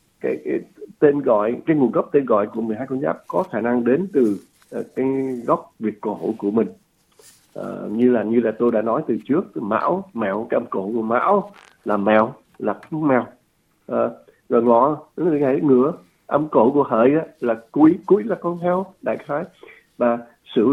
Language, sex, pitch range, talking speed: Vietnamese, male, 115-155 Hz, 205 wpm